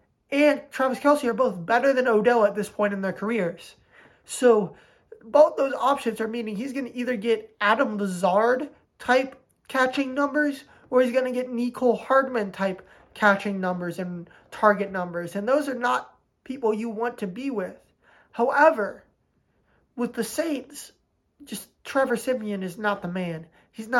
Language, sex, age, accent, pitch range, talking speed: English, male, 20-39, American, 200-250 Hz, 160 wpm